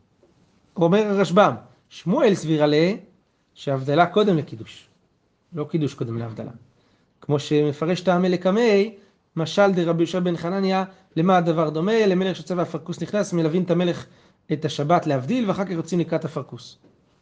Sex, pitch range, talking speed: male, 155-190 Hz, 140 wpm